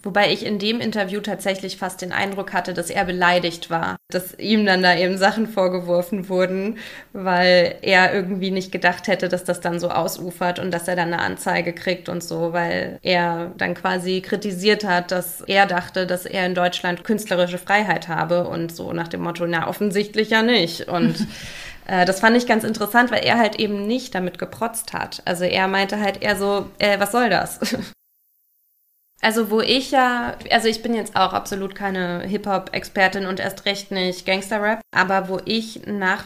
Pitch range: 185-220 Hz